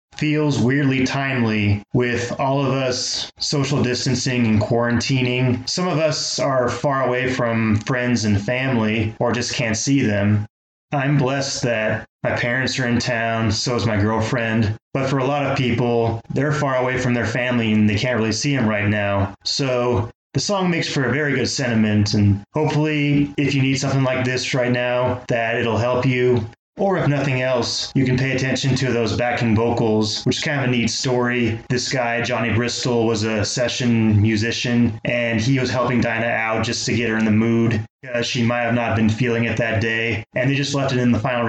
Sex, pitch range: male, 115-135 Hz